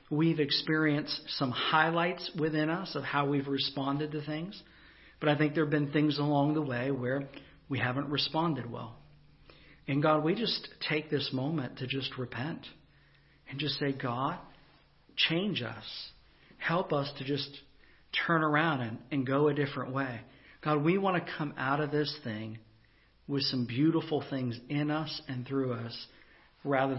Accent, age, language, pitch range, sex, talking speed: American, 50-69, English, 130-150 Hz, male, 165 wpm